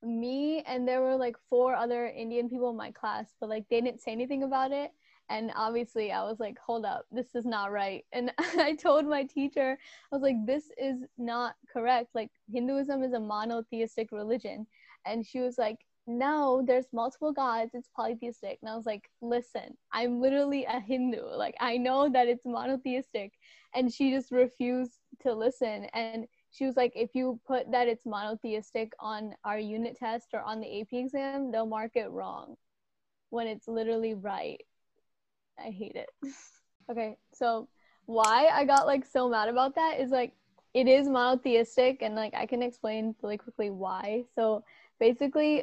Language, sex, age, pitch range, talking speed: English, female, 10-29, 225-260 Hz, 180 wpm